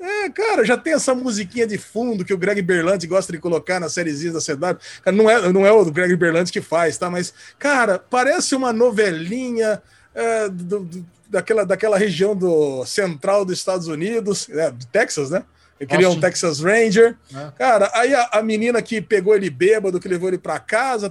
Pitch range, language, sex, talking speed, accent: 180-240 Hz, Portuguese, male, 190 wpm, Brazilian